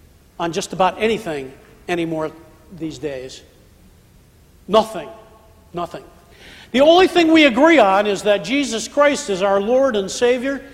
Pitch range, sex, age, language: 185-265 Hz, male, 50-69, English